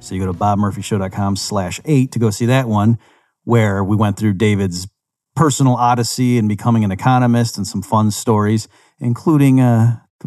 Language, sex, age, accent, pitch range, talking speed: English, male, 40-59, American, 100-125 Hz, 170 wpm